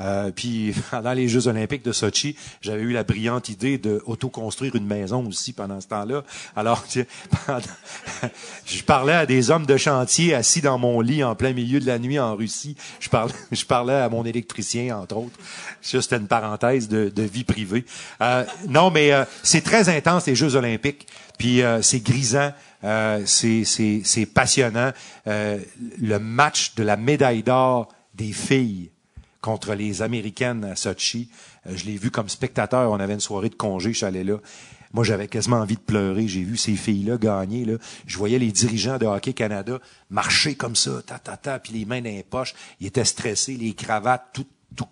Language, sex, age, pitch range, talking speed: English, male, 40-59, 105-130 Hz, 195 wpm